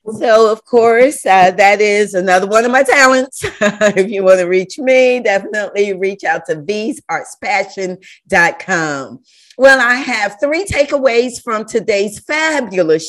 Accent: American